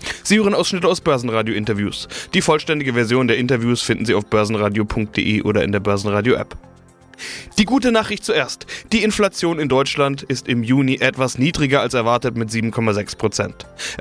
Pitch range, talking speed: 115-155 Hz, 150 wpm